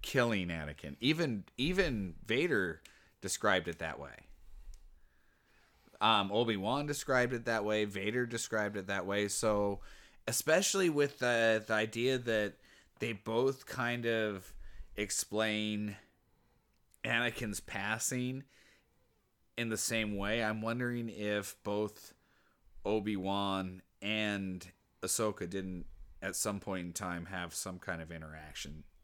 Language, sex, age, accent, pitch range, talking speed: English, male, 30-49, American, 90-115 Hz, 115 wpm